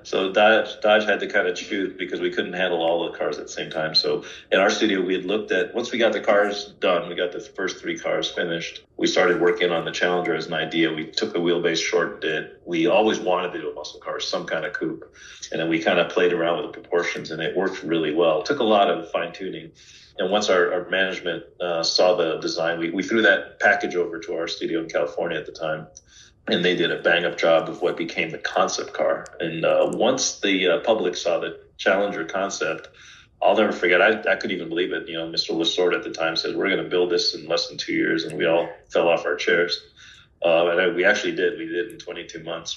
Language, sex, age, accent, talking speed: English, male, 40-59, American, 255 wpm